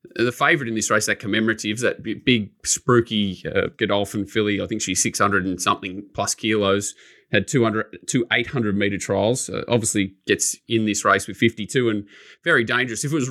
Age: 20-39